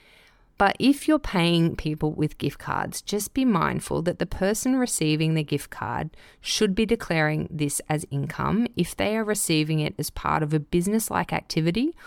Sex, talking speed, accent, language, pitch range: female, 175 wpm, Australian, English, 150-185 Hz